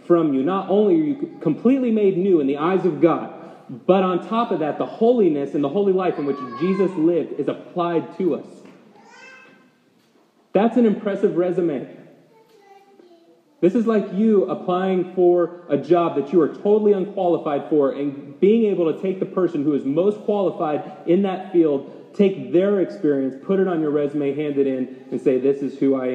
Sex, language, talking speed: male, English, 190 wpm